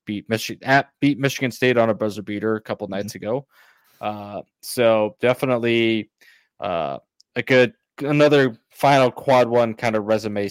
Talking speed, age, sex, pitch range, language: 155 wpm, 20-39, male, 100-115 Hz, English